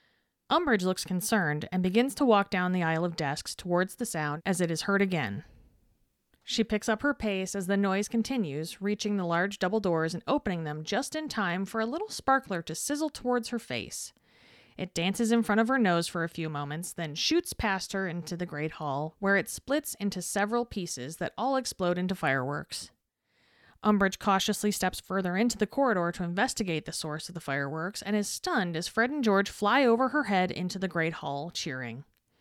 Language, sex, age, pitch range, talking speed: English, female, 30-49, 170-220 Hz, 200 wpm